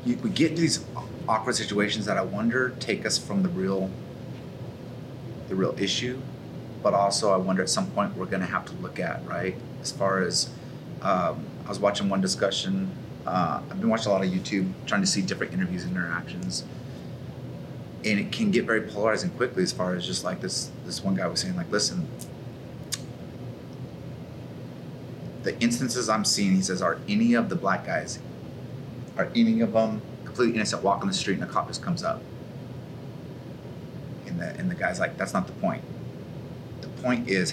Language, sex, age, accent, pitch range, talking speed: English, male, 30-49, American, 100-160 Hz, 185 wpm